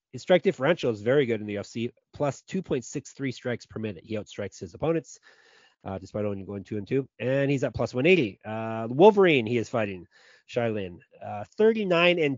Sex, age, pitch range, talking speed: male, 30-49, 100-135 Hz, 190 wpm